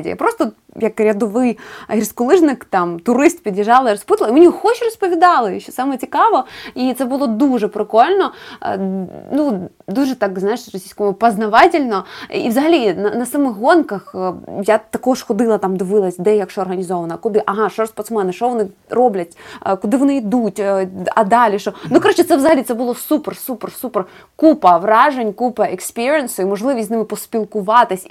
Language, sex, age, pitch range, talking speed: Ukrainian, female, 20-39, 195-255 Hz, 150 wpm